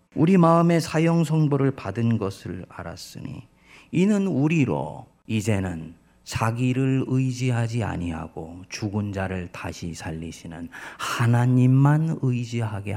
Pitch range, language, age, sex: 105-165 Hz, Korean, 40-59, male